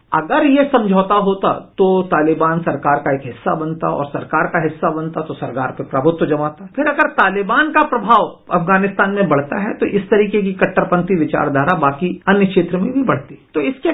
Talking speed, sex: 190 wpm, male